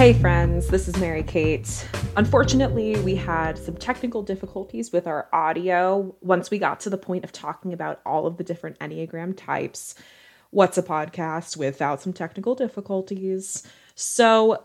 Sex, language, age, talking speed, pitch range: female, English, 20-39, 150 wpm, 180-225 Hz